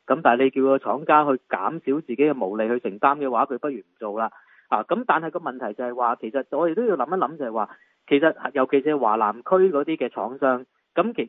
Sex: male